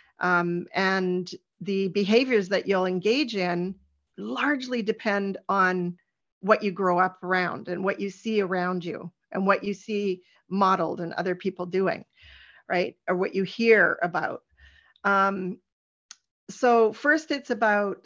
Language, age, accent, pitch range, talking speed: English, 40-59, American, 185-225 Hz, 140 wpm